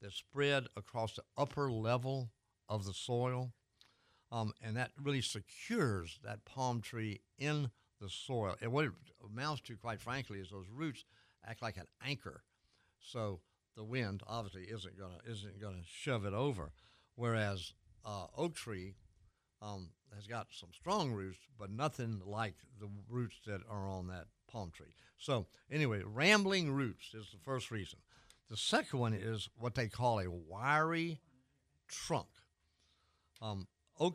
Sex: male